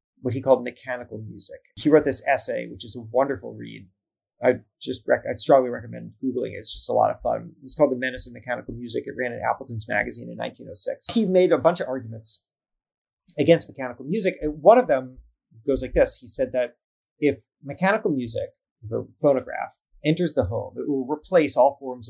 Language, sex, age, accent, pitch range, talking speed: English, male, 30-49, American, 125-180 Hz, 200 wpm